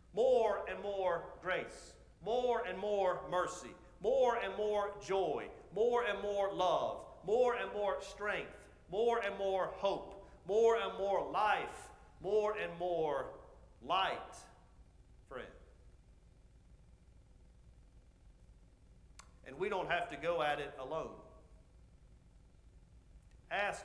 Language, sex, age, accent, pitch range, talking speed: English, male, 40-59, American, 145-210 Hz, 110 wpm